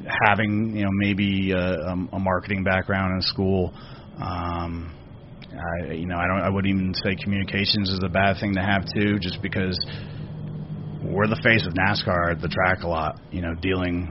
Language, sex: English, male